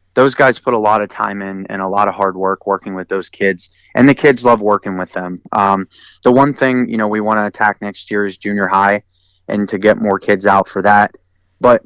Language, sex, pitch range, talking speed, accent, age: English, male, 95-115 Hz, 250 wpm, American, 20-39